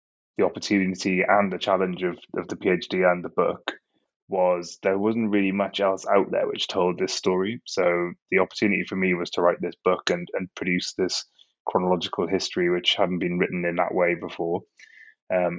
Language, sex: English, male